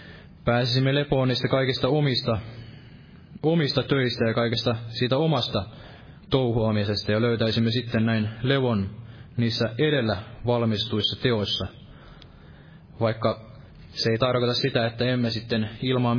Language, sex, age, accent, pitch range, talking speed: Finnish, male, 20-39, native, 115-130 Hz, 110 wpm